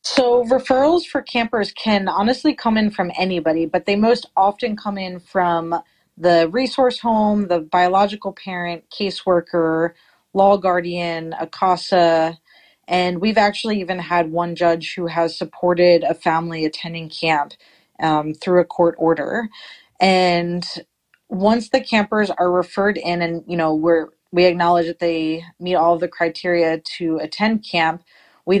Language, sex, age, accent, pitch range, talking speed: English, female, 30-49, American, 170-205 Hz, 145 wpm